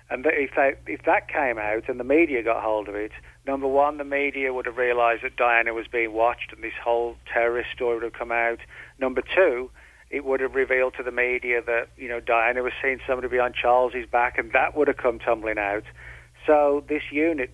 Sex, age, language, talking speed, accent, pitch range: male, 40-59, English, 210 wpm, British, 115-130 Hz